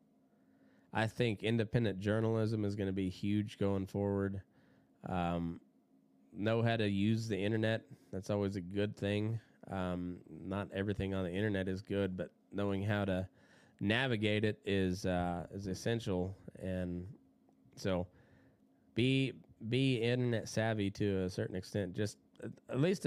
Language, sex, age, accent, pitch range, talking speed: English, male, 20-39, American, 95-115 Hz, 140 wpm